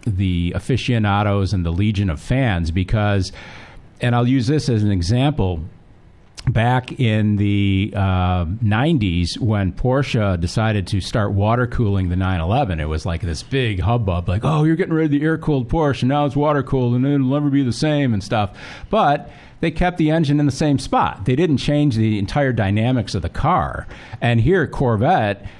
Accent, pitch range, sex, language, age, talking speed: American, 95-125 Hz, male, English, 50-69, 185 wpm